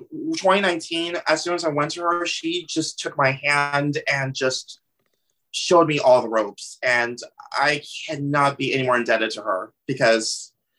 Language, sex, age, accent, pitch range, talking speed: English, male, 30-49, American, 135-165 Hz, 165 wpm